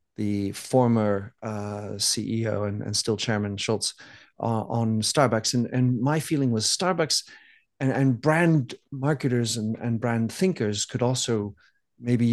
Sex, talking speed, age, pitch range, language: male, 140 wpm, 50-69, 110-130 Hz, English